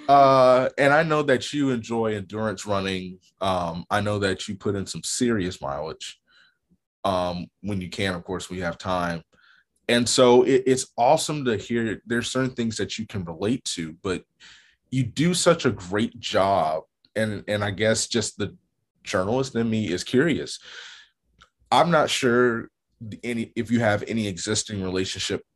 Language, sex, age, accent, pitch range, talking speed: English, male, 30-49, American, 95-120 Hz, 165 wpm